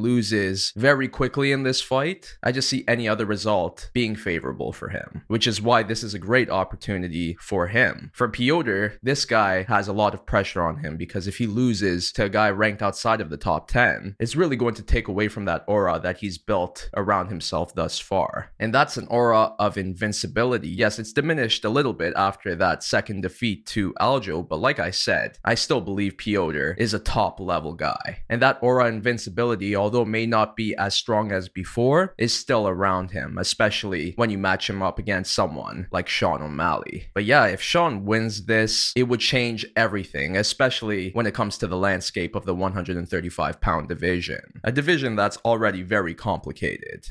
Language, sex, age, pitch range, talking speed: English, male, 20-39, 95-120 Hz, 195 wpm